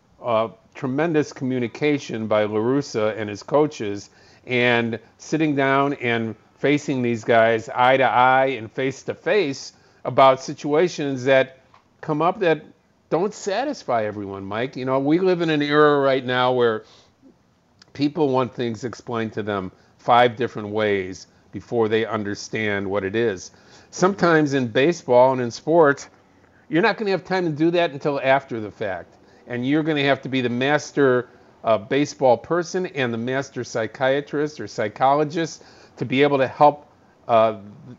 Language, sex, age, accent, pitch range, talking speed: English, male, 50-69, American, 115-150 Hz, 155 wpm